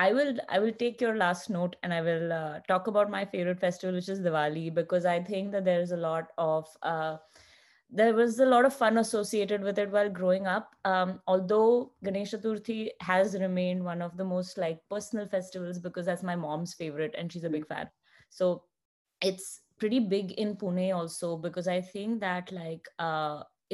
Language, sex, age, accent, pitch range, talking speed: English, female, 20-39, Indian, 175-205 Hz, 195 wpm